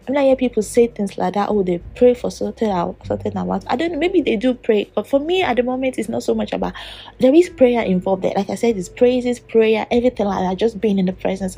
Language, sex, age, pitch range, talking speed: English, female, 20-39, 180-230 Hz, 270 wpm